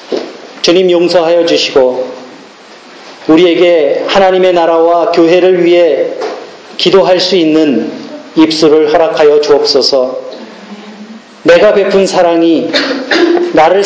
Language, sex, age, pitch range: Korean, male, 40-59, 160-210 Hz